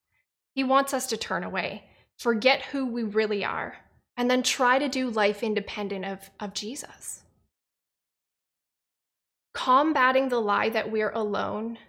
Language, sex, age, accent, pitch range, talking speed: English, female, 10-29, American, 210-255 Hz, 135 wpm